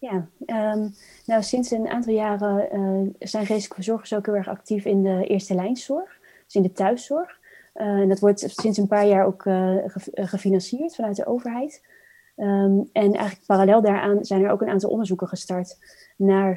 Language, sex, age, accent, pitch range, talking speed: Dutch, female, 20-39, Dutch, 185-205 Hz, 185 wpm